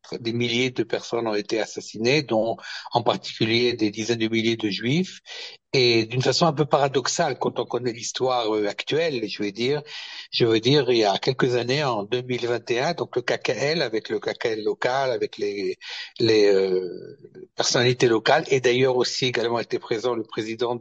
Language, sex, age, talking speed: French, male, 60-79, 175 wpm